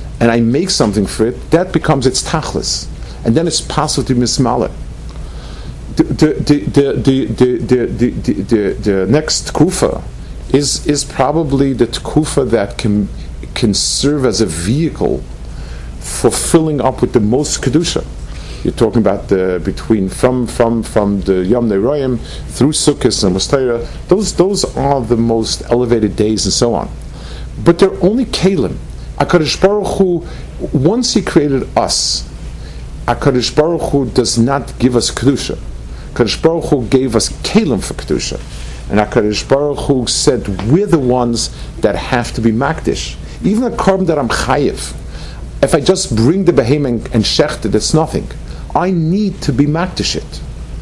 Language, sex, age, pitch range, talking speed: English, male, 50-69, 110-155 Hz, 150 wpm